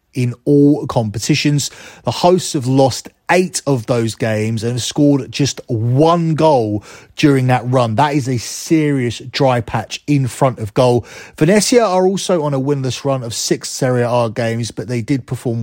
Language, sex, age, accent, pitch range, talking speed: English, male, 30-49, British, 115-145 Hz, 175 wpm